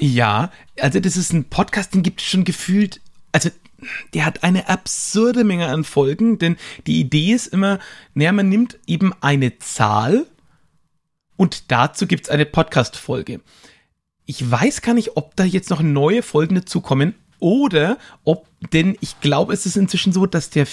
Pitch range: 140-185 Hz